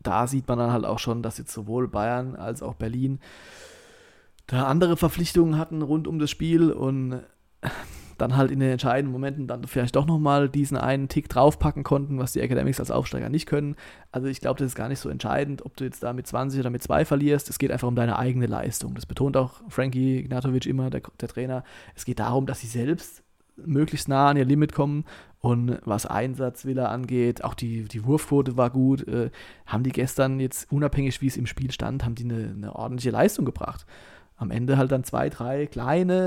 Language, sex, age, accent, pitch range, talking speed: German, male, 30-49, German, 120-145 Hz, 210 wpm